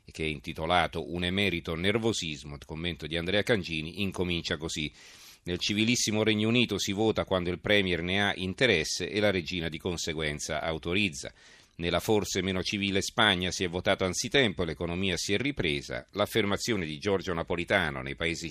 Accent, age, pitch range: native, 40-59, 80-100 Hz